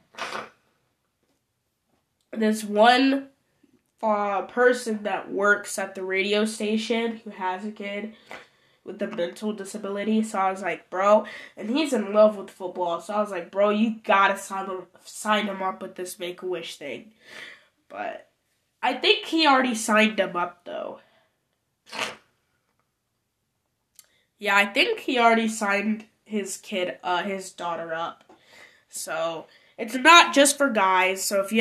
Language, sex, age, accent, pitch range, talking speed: English, female, 10-29, American, 185-225 Hz, 140 wpm